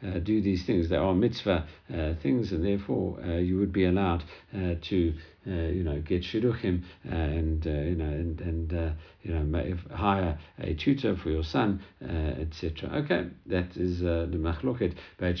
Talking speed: 195 wpm